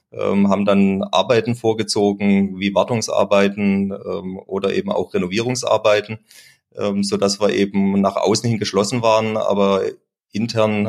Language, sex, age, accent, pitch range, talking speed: German, male, 30-49, German, 100-110 Hz, 115 wpm